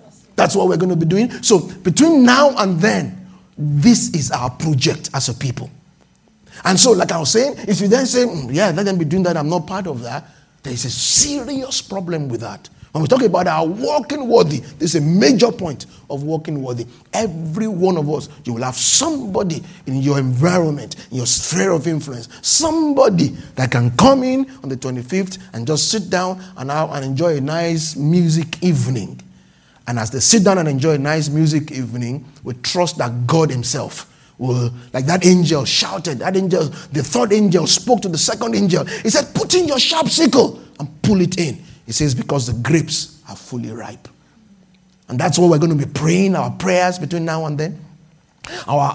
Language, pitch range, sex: English, 135-185 Hz, male